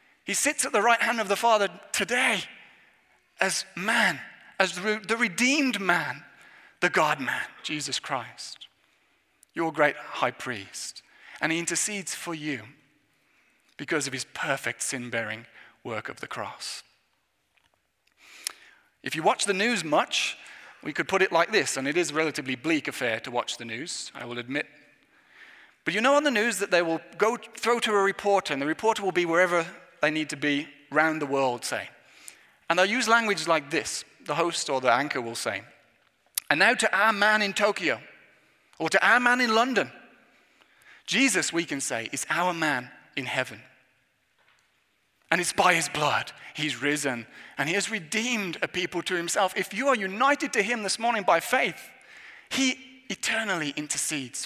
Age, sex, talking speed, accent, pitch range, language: 30-49, male, 170 wpm, British, 145-220 Hz, English